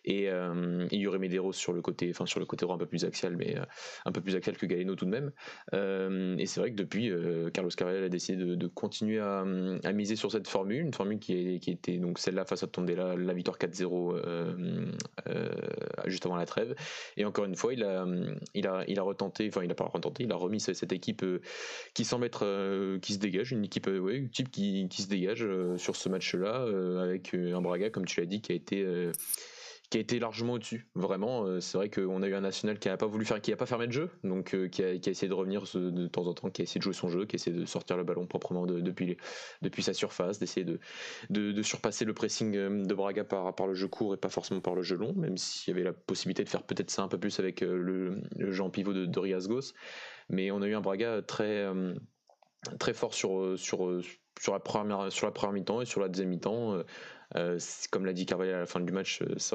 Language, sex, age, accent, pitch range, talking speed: French, male, 20-39, French, 90-100 Hz, 255 wpm